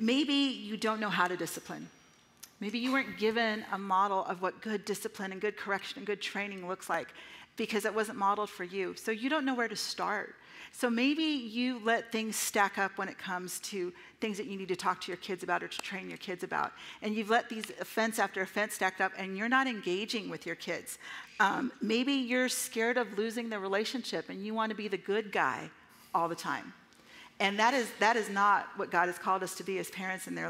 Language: English